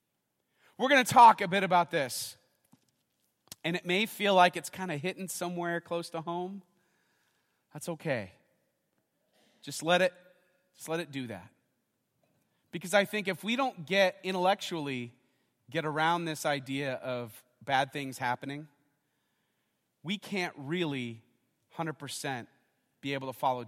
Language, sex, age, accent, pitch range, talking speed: English, male, 30-49, American, 130-185 Hz, 140 wpm